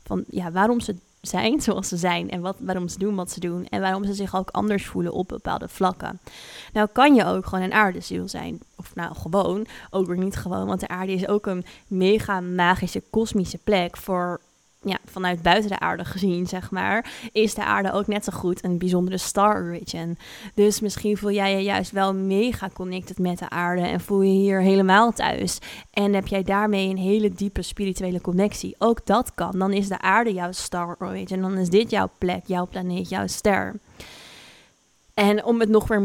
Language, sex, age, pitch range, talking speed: Dutch, female, 20-39, 185-205 Hz, 205 wpm